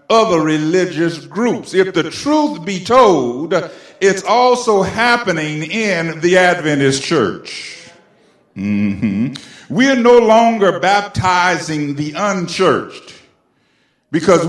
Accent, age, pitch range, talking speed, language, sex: American, 50-69, 155-225 Hz, 95 wpm, English, male